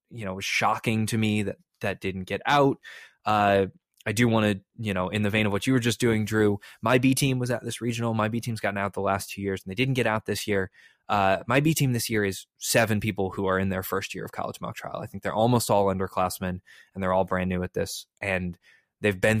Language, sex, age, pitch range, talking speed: English, male, 20-39, 95-120 Hz, 270 wpm